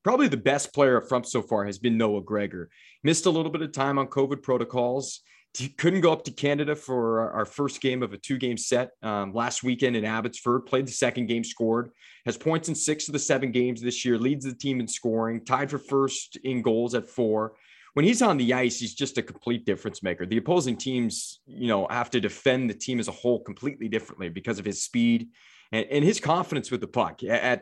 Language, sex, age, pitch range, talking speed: English, male, 30-49, 115-145 Hz, 225 wpm